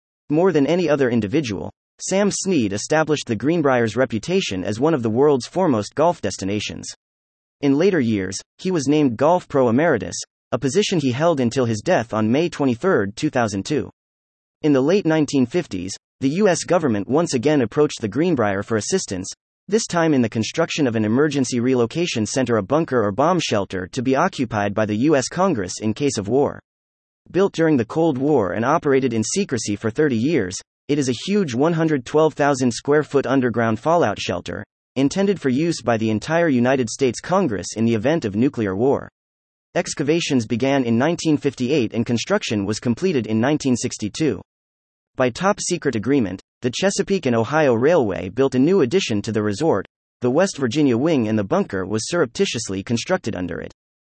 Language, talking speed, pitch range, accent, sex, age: English, 170 wpm, 110-155 Hz, American, male, 30-49